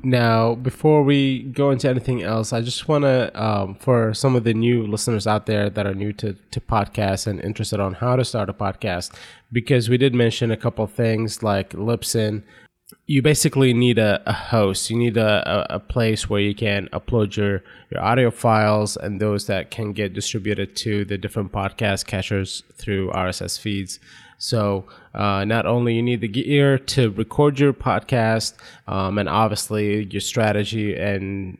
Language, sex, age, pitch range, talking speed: English, male, 20-39, 100-120 Hz, 180 wpm